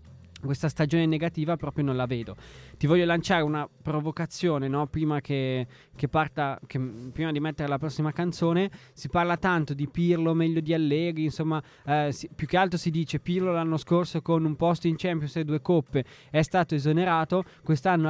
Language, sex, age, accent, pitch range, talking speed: Italian, male, 20-39, native, 135-165 Hz, 180 wpm